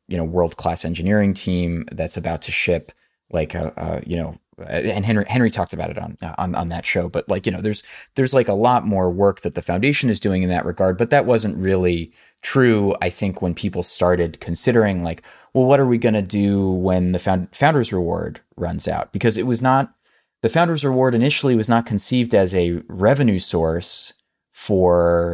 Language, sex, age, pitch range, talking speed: English, male, 30-49, 85-110 Hz, 205 wpm